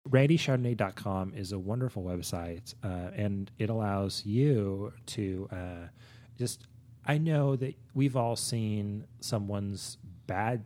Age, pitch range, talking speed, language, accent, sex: 30-49, 95-120 Hz, 120 wpm, English, American, male